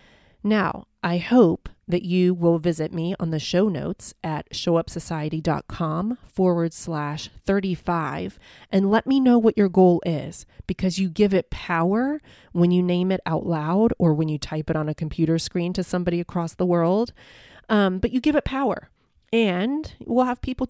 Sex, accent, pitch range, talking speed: female, American, 165-205 Hz, 175 wpm